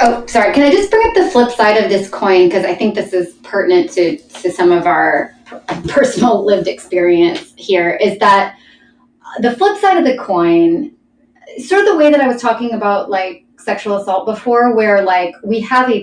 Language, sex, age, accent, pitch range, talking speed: English, female, 20-39, American, 180-255 Hz, 200 wpm